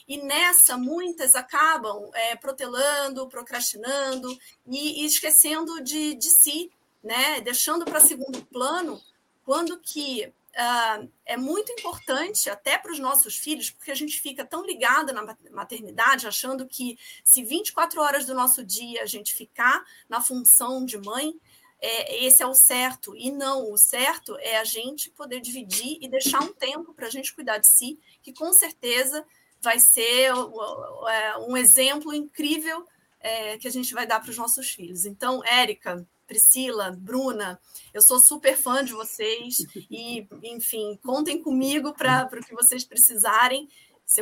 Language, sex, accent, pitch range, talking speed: Portuguese, female, Brazilian, 235-300 Hz, 150 wpm